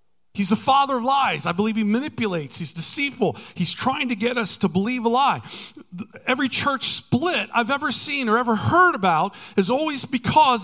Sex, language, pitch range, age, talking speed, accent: male, English, 125-195 Hz, 40-59, 185 wpm, American